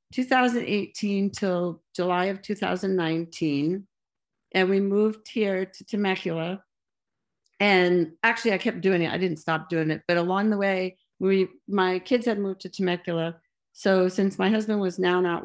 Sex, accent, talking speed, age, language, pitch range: female, American, 155 wpm, 50-69, English, 175-200 Hz